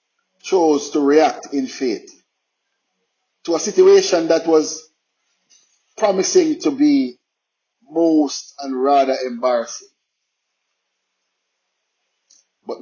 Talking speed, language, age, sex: 85 wpm, English, 50-69, male